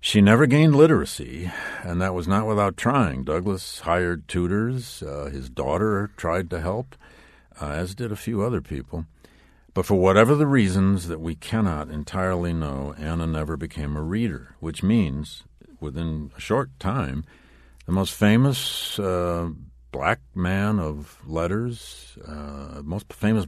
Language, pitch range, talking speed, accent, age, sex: English, 70-95 Hz, 150 wpm, American, 50-69, male